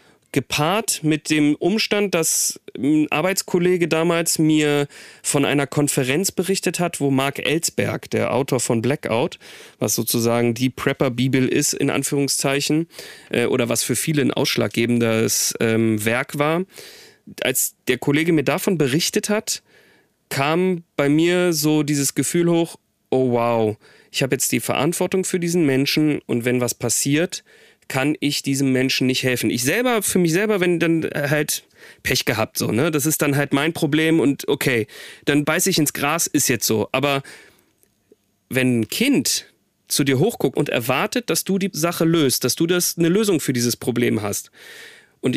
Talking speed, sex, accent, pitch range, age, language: 160 wpm, male, German, 130-170 Hz, 30-49, German